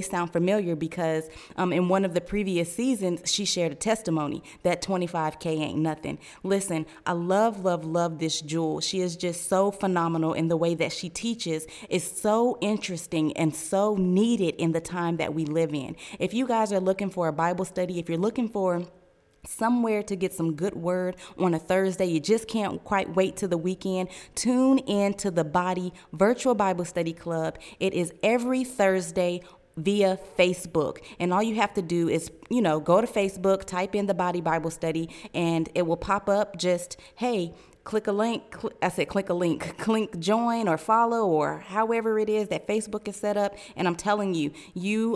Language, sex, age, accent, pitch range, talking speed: English, female, 20-39, American, 165-200 Hz, 195 wpm